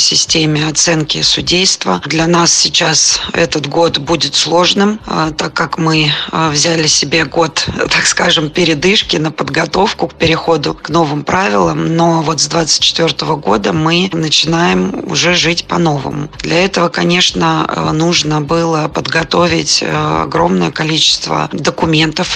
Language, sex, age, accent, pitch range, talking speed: Russian, female, 20-39, native, 155-170 Hz, 120 wpm